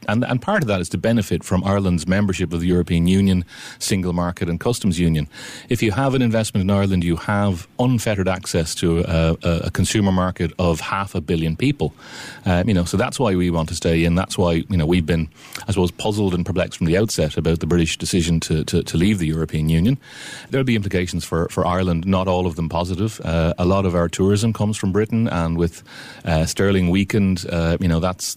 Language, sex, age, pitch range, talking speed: English, male, 30-49, 85-100 Hz, 225 wpm